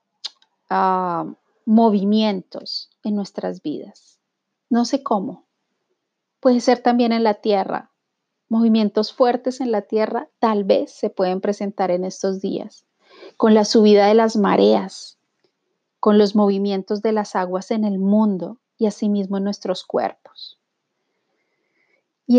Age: 30-49